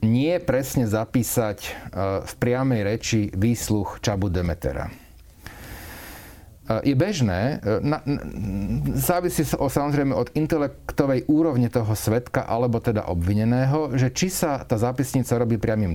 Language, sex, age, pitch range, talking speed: Slovak, male, 40-59, 100-135 Hz, 115 wpm